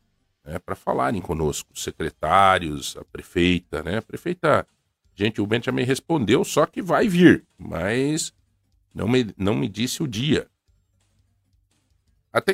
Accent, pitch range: Brazilian, 90-125 Hz